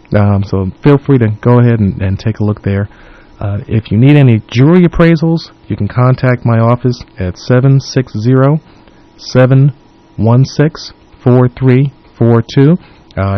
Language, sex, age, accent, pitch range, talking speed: English, male, 40-59, American, 105-130 Hz, 120 wpm